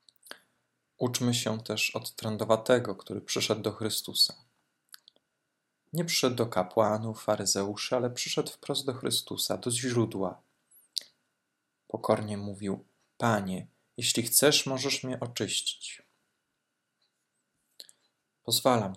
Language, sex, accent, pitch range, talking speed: Polish, male, native, 75-120 Hz, 95 wpm